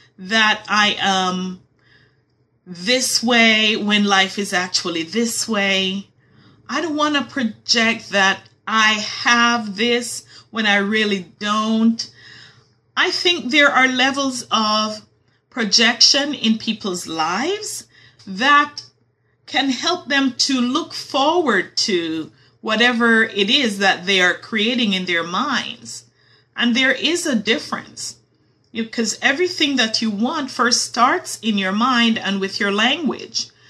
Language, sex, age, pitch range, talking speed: English, female, 30-49, 200-260 Hz, 125 wpm